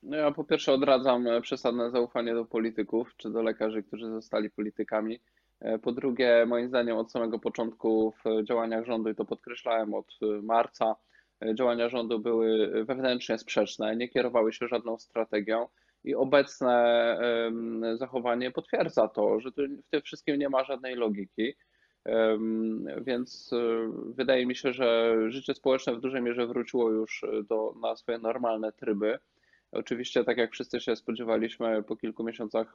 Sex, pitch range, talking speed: male, 110-120 Hz, 140 wpm